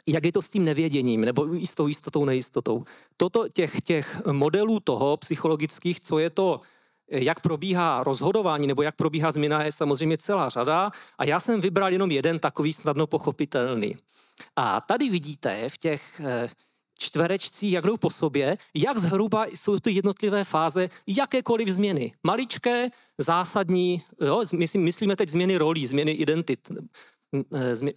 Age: 40-59